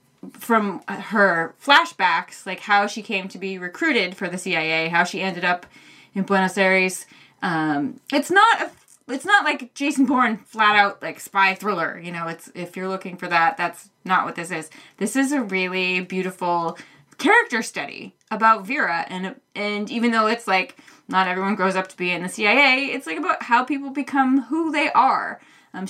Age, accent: 20-39, American